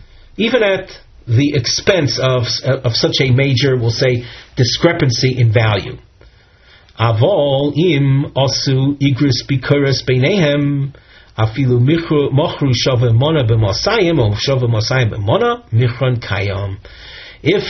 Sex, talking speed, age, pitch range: male, 50 wpm, 40-59, 115-145 Hz